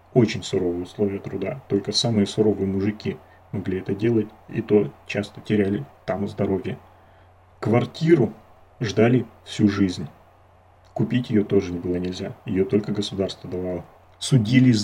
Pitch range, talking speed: 95-110 Hz, 130 wpm